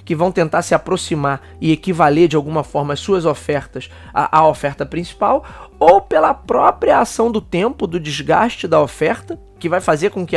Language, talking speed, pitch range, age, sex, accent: Portuguese, 180 wpm, 150-195 Hz, 20-39, male, Brazilian